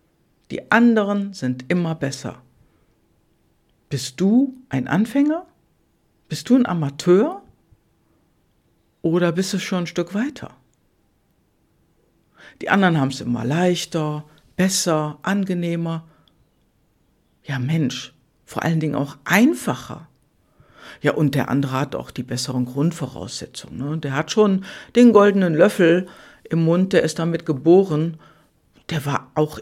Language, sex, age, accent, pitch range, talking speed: German, female, 60-79, German, 155-215 Hz, 120 wpm